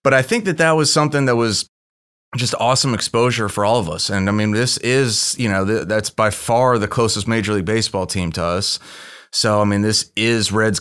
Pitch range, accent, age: 105-125 Hz, American, 30-49